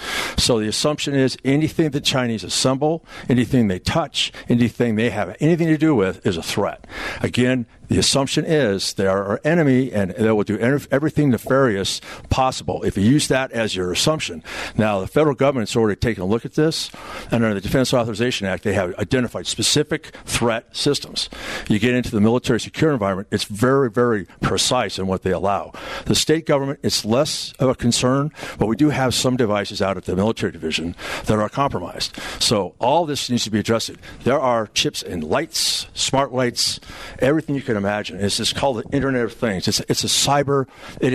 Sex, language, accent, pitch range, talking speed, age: male, English, American, 105-135 Hz, 195 wpm, 60-79